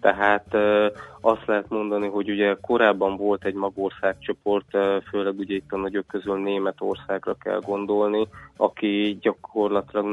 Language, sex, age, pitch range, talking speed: Hungarian, male, 20-39, 95-105 Hz, 125 wpm